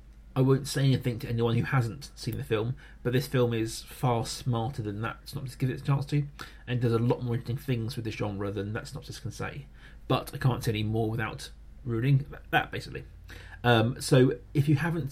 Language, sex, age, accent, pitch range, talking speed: English, male, 30-49, British, 105-135 Hz, 220 wpm